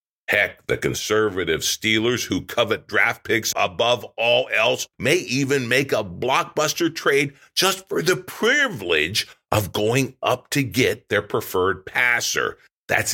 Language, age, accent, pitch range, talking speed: English, 50-69, American, 95-140 Hz, 135 wpm